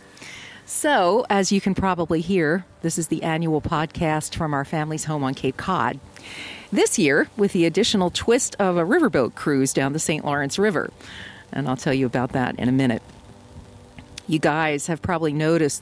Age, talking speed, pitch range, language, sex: 50-69, 180 wpm, 130-170 Hz, English, female